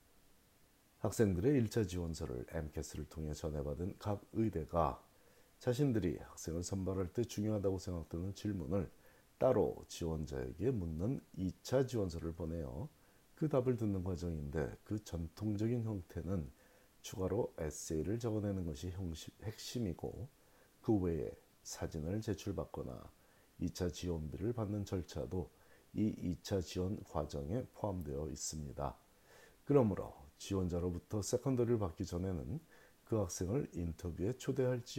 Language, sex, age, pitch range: Korean, male, 40-59, 80-110 Hz